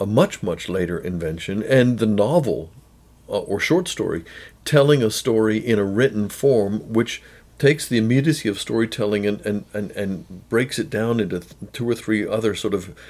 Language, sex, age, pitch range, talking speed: English, male, 50-69, 105-140 Hz, 180 wpm